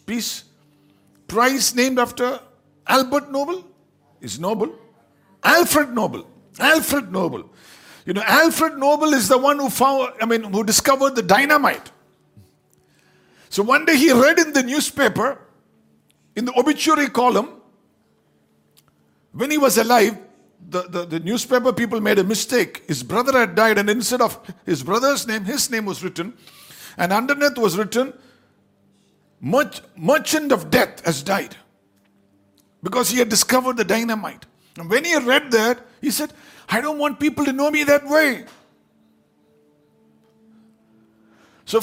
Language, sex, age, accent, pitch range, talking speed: English, male, 60-79, Indian, 190-290 Hz, 140 wpm